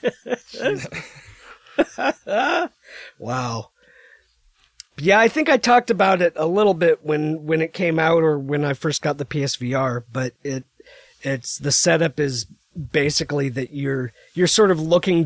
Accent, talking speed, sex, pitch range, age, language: American, 140 wpm, male, 130-160 Hz, 40-59, English